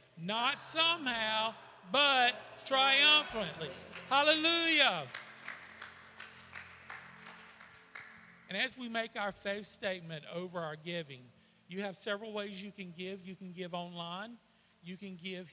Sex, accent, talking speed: male, American, 110 wpm